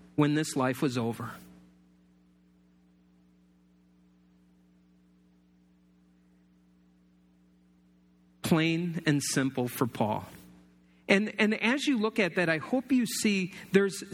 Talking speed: 95 wpm